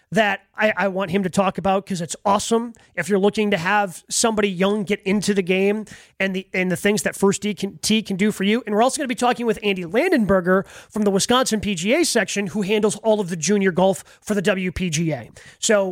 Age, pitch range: 30-49, 195-225 Hz